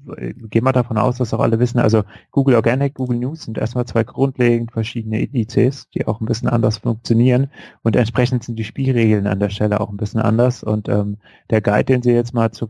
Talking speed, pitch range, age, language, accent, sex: 215 wpm, 110-125 Hz, 30-49, German, German, male